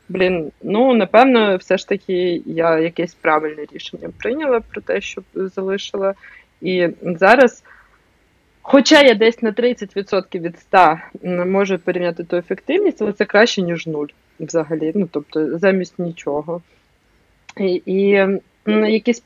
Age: 20-39